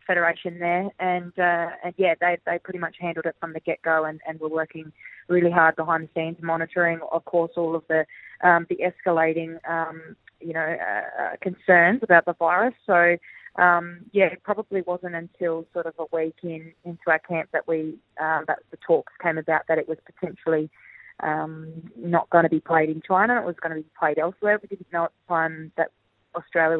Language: English